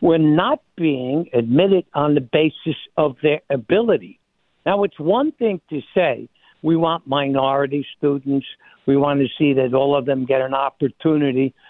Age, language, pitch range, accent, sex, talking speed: 60-79, English, 150-200 Hz, American, male, 160 wpm